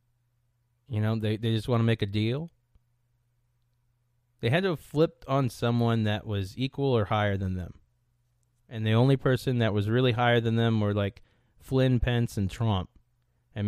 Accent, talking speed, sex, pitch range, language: American, 180 wpm, male, 110-120 Hz, English